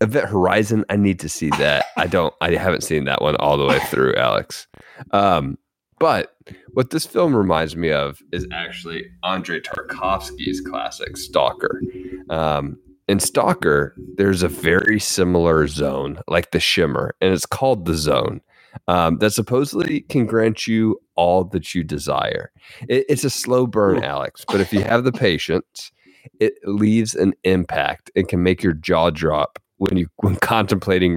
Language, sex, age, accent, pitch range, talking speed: English, male, 30-49, American, 85-105 Hz, 165 wpm